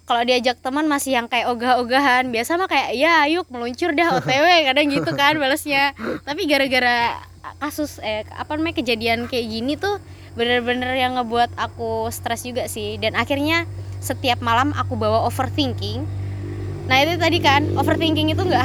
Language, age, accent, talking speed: Indonesian, 20-39, native, 160 wpm